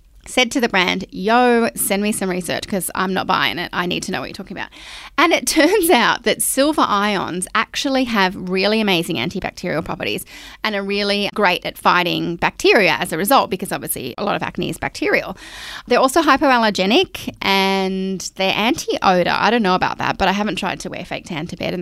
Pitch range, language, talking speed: 185-245 Hz, English, 205 wpm